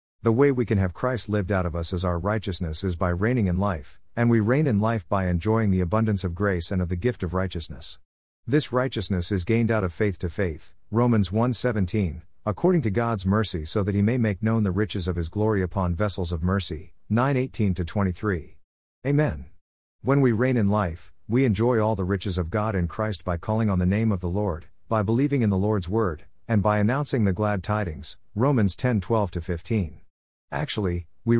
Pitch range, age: 90-115 Hz, 50-69